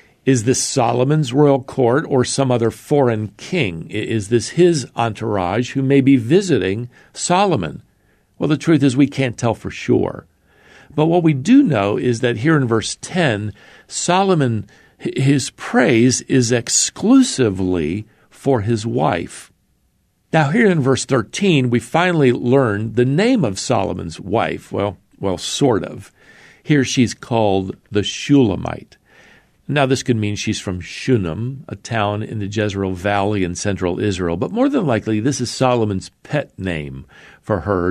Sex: male